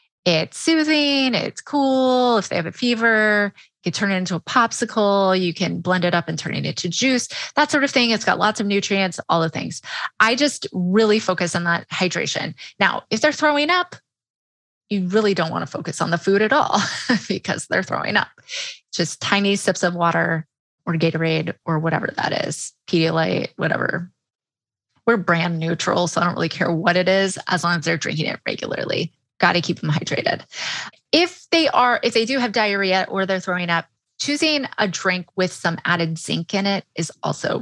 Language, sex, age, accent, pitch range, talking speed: English, female, 20-39, American, 170-235 Hz, 200 wpm